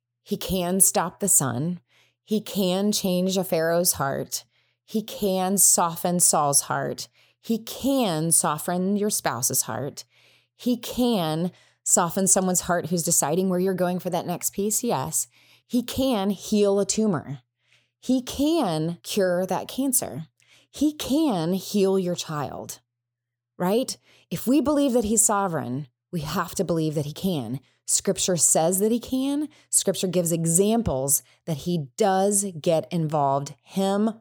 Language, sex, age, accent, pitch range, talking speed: English, female, 20-39, American, 150-205 Hz, 140 wpm